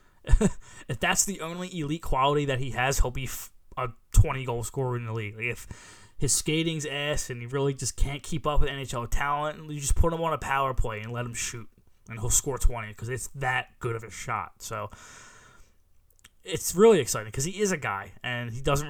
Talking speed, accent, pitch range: 210 wpm, American, 115-135 Hz